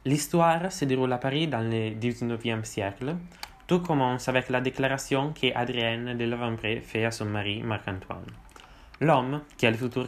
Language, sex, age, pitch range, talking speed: French, male, 20-39, 110-135 Hz, 165 wpm